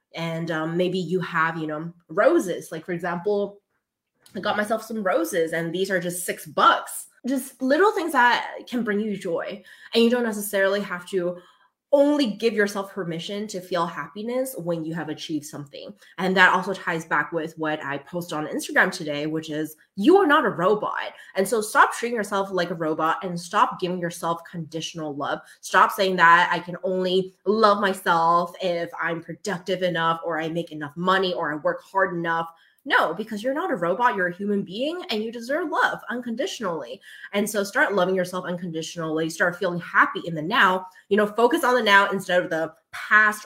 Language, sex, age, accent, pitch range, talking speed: English, female, 20-39, American, 170-210 Hz, 195 wpm